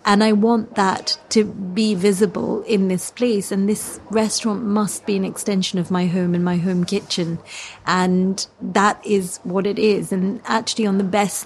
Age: 30-49